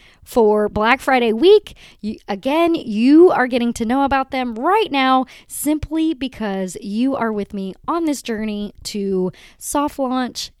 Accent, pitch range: American, 210-280 Hz